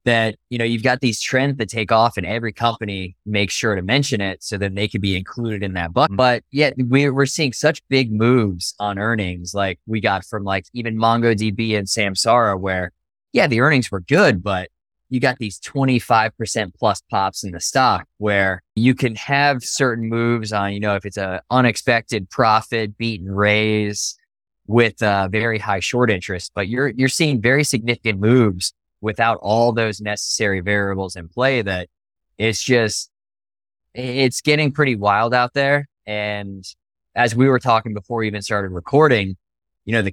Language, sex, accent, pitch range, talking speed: English, male, American, 95-120 Hz, 180 wpm